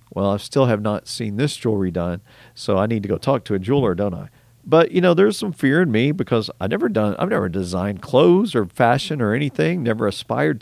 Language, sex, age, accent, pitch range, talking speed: English, male, 40-59, American, 100-130 Hz, 235 wpm